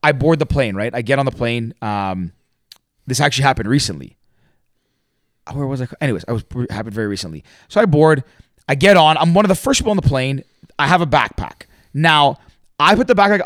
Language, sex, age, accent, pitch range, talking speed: English, male, 30-49, American, 120-170 Hz, 220 wpm